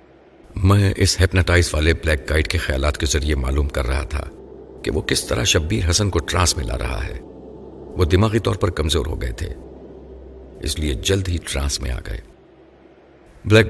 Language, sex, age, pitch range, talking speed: Urdu, male, 50-69, 75-95 Hz, 190 wpm